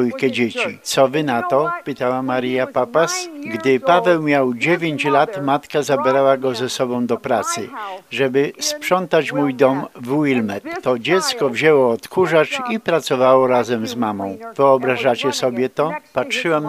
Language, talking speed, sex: Polish, 140 wpm, male